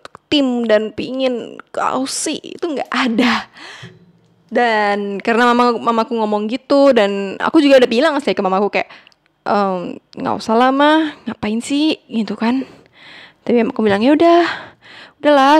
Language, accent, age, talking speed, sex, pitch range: Indonesian, native, 10-29, 135 wpm, female, 220-290 Hz